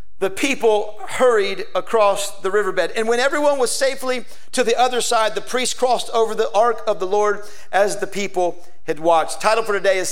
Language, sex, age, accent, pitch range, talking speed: English, male, 50-69, American, 195-225 Hz, 195 wpm